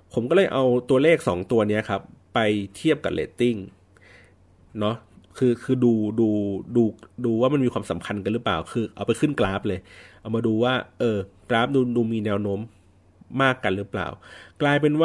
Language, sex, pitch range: Thai, male, 95-130 Hz